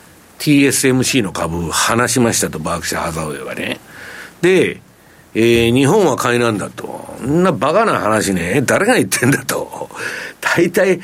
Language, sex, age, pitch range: Japanese, male, 60-79, 105-165 Hz